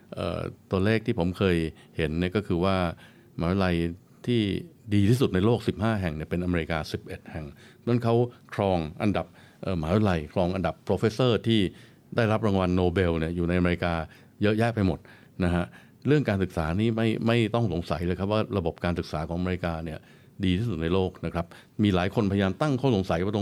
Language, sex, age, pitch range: Thai, male, 60-79, 85-110 Hz